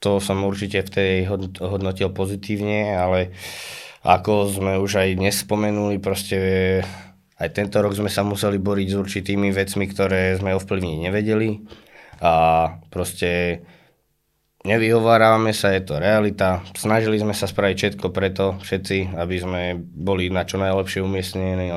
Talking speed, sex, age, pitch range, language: 140 wpm, male, 20-39, 90-100 Hz, Slovak